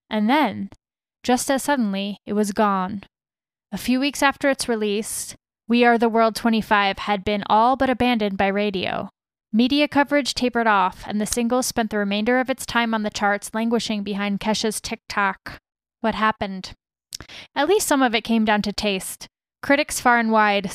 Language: English